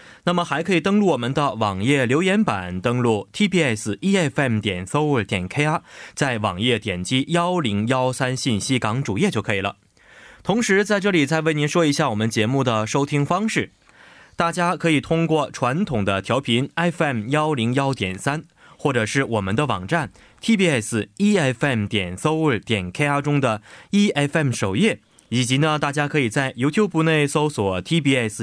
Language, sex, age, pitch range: Korean, male, 20-39, 110-160 Hz